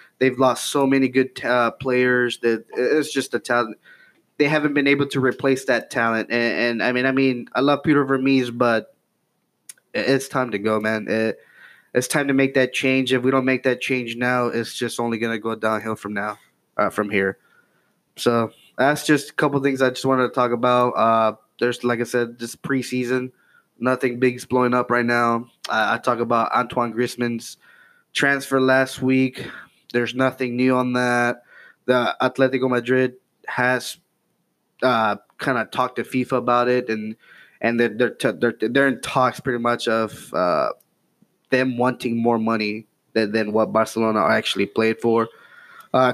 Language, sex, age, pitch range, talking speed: English, male, 20-39, 120-130 Hz, 175 wpm